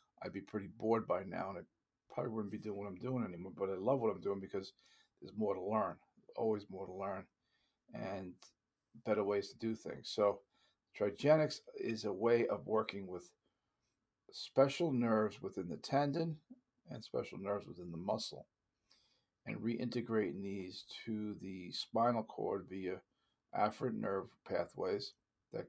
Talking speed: 160 wpm